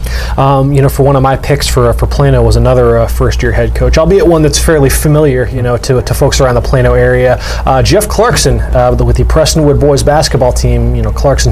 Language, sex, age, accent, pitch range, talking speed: English, male, 20-39, American, 120-140 Hz, 230 wpm